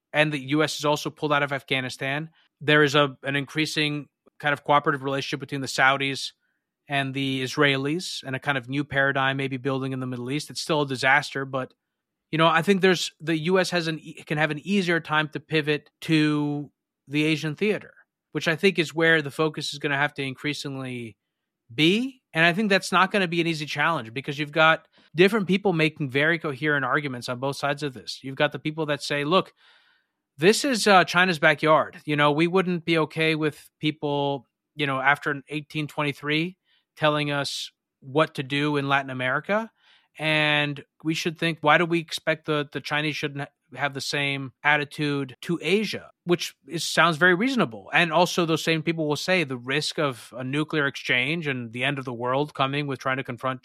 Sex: male